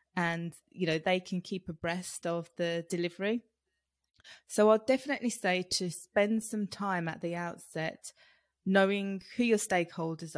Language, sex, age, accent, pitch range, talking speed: English, female, 20-39, British, 175-205 Hz, 145 wpm